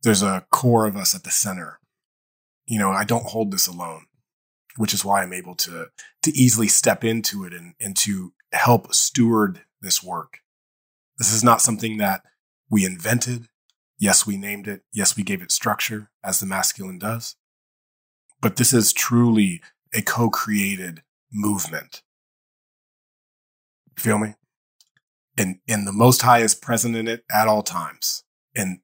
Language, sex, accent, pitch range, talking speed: English, male, American, 100-125 Hz, 160 wpm